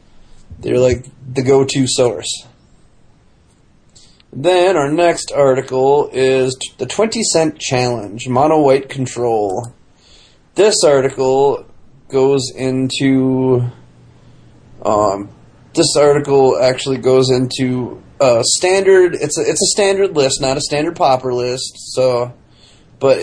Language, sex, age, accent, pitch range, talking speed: English, male, 30-49, American, 130-150 Hz, 110 wpm